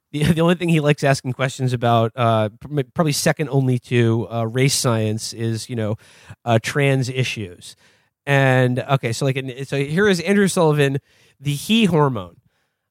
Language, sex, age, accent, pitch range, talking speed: English, male, 30-49, American, 120-160 Hz, 155 wpm